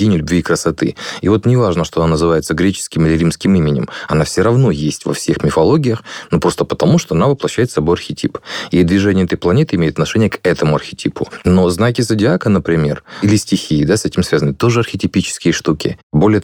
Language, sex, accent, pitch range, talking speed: Russian, male, native, 80-100 Hz, 195 wpm